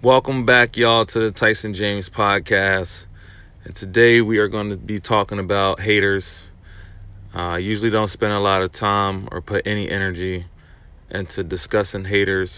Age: 30-49